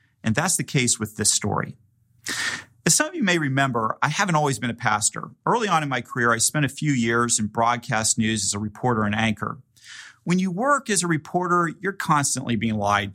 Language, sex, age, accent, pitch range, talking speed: English, male, 40-59, American, 115-150 Hz, 215 wpm